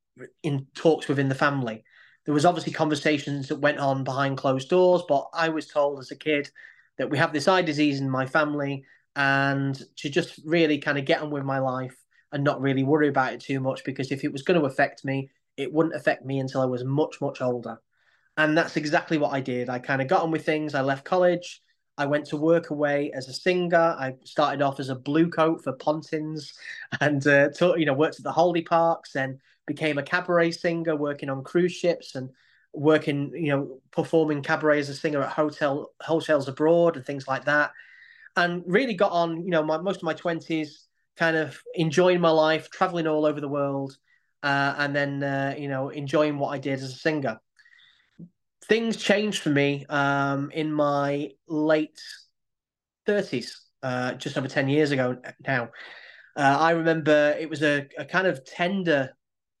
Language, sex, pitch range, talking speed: English, male, 140-165 Hz, 200 wpm